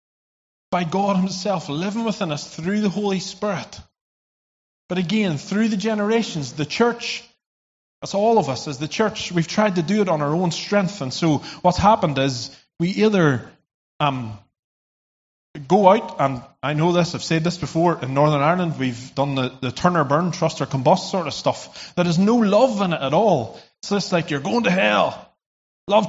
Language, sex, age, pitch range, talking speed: English, male, 30-49, 150-215 Hz, 190 wpm